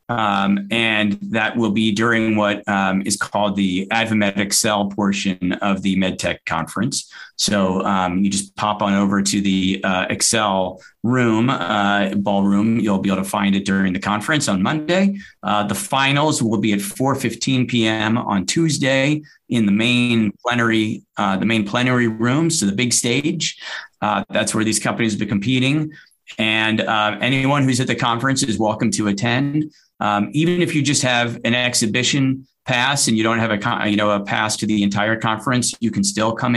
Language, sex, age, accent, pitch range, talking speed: English, male, 30-49, American, 105-125 Hz, 180 wpm